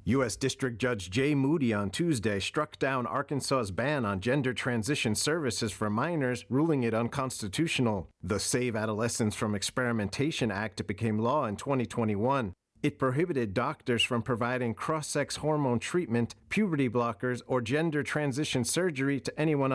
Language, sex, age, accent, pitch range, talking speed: English, male, 40-59, American, 115-145 Hz, 140 wpm